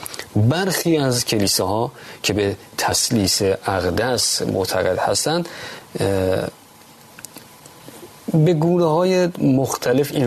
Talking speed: 90 wpm